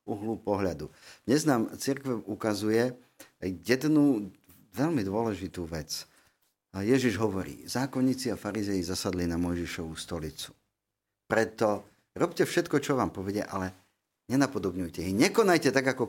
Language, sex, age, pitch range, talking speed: Slovak, male, 50-69, 95-120 Hz, 115 wpm